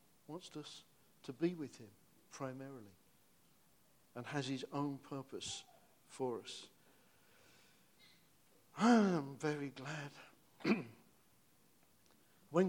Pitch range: 125-150 Hz